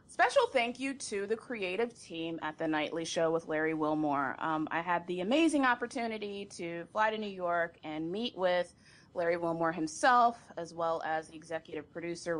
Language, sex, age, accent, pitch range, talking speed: English, female, 30-49, American, 160-185 Hz, 180 wpm